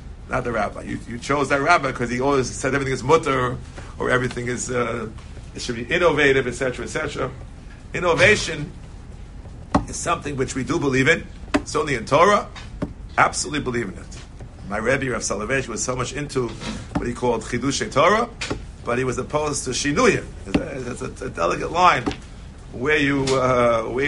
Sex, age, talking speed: male, 50-69, 180 wpm